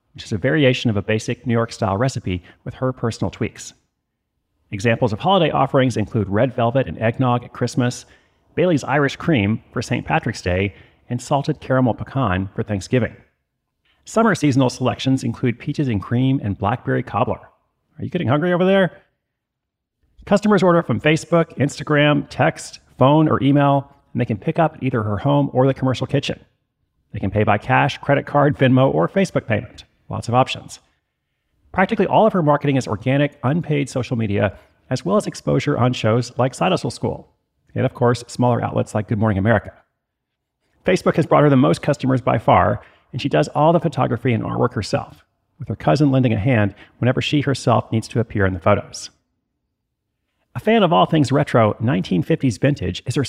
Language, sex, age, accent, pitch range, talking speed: English, male, 40-59, American, 115-145 Hz, 180 wpm